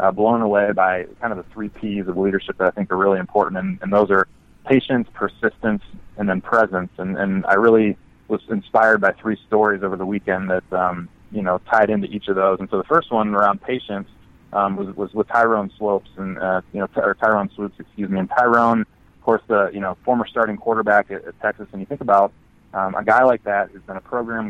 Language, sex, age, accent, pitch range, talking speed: English, male, 20-39, American, 95-110 Hz, 235 wpm